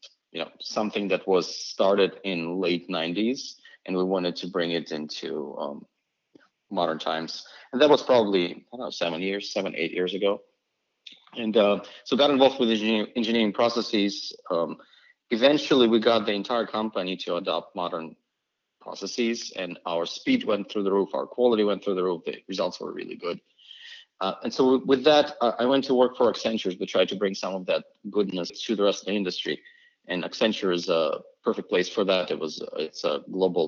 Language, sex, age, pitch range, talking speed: English, male, 30-49, 95-130 Hz, 185 wpm